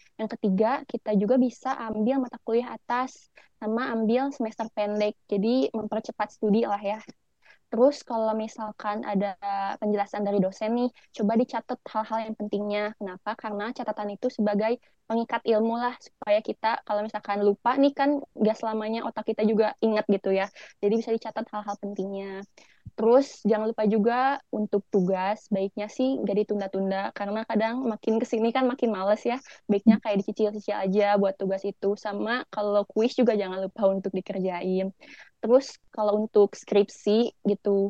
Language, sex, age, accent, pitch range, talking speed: Indonesian, female, 20-39, native, 205-230 Hz, 155 wpm